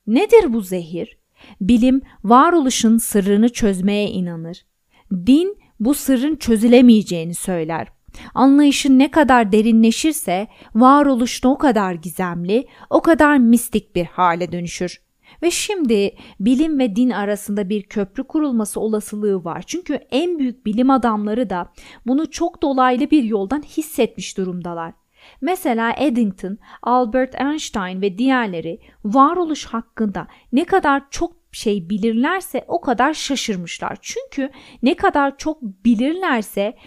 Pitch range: 205-280 Hz